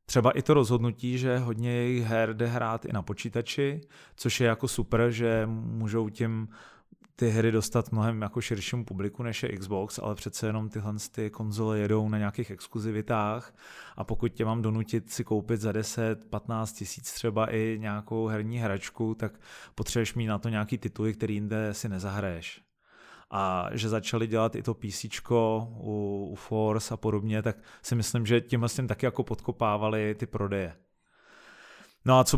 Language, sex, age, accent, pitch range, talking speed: Czech, male, 20-39, native, 105-120 Hz, 170 wpm